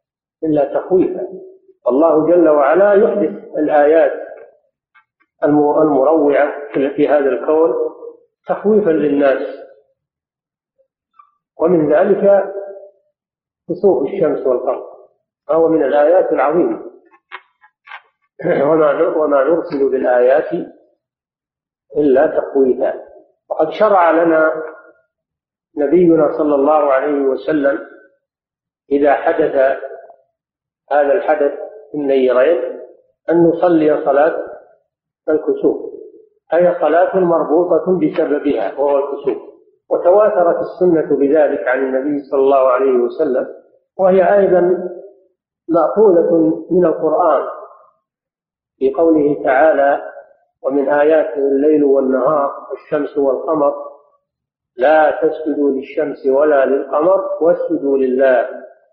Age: 40-59